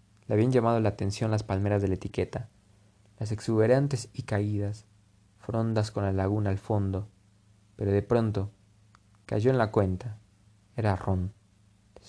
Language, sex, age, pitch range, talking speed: Spanish, male, 20-39, 100-110 Hz, 150 wpm